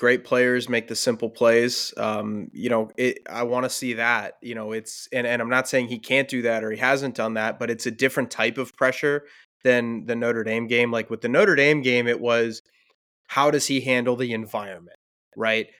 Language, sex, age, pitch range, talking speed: English, male, 20-39, 115-130 Hz, 225 wpm